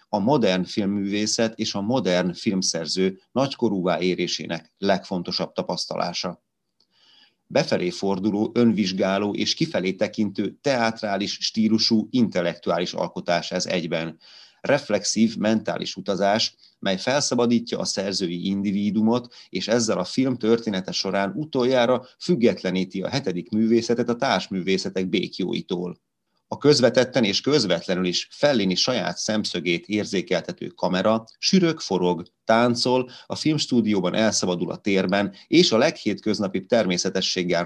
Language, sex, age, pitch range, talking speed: Hungarian, male, 30-49, 95-115 Hz, 105 wpm